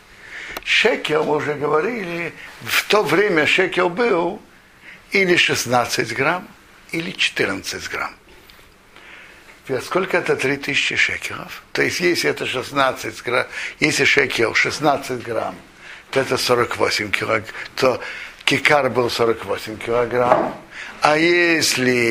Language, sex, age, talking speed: Russian, male, 60-79, 100 wpm